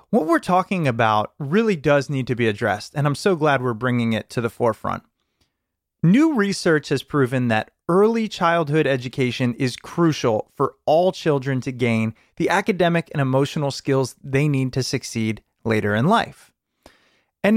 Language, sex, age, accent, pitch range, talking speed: English, male, 30-49, American, 135-195 Hz, 160 wpm